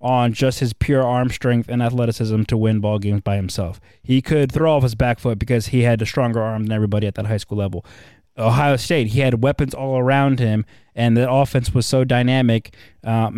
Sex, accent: male, American